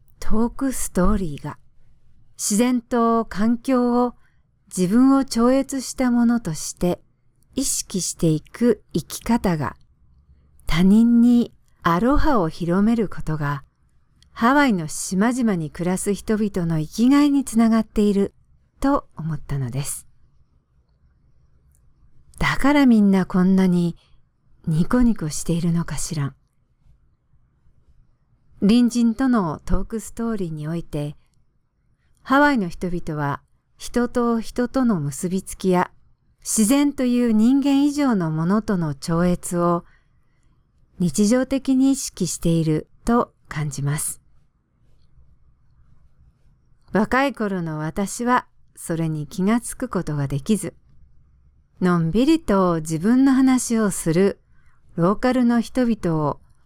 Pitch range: 155-235 Hz